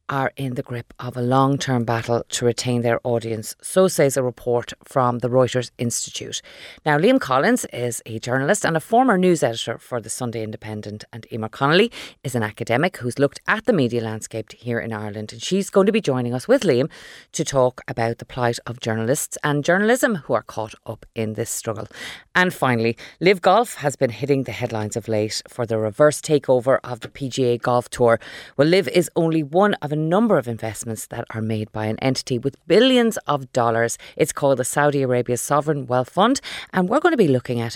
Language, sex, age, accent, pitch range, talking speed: English, female, 30-49, Irish, 120-180 Hz, 205 wpm